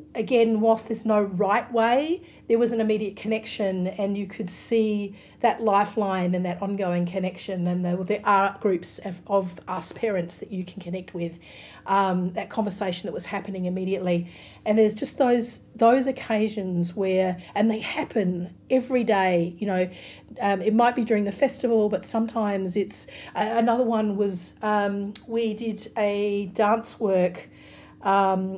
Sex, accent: female, Australian